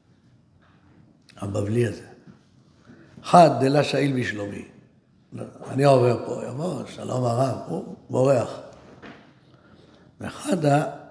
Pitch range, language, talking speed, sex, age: 120-145 Hz, Hebrew, 80 wpm, male, 60-79